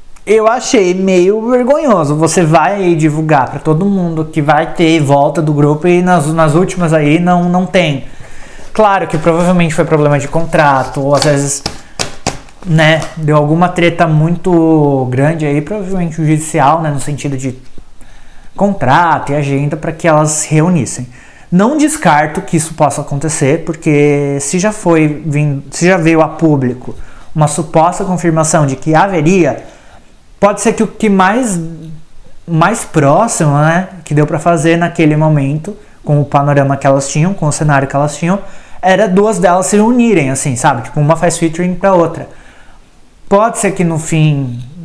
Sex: male